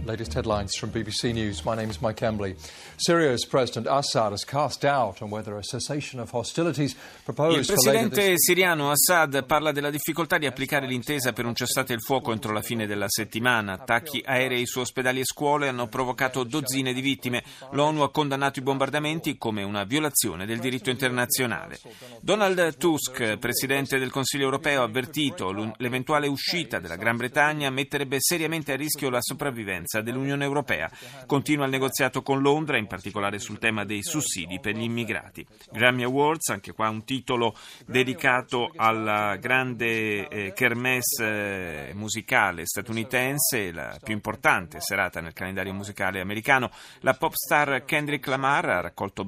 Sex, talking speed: male, 130 wpm